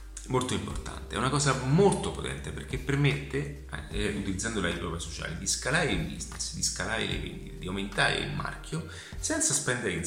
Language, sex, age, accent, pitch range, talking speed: Italian, male, 30-49, native, 75-120 Hz, 175 wpm